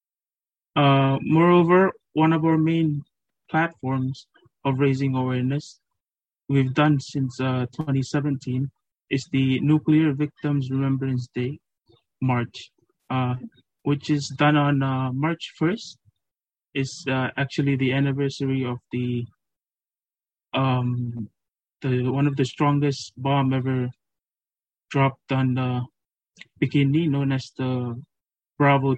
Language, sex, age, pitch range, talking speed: English, male, 20-39, 125-145 Hz, 115 wpm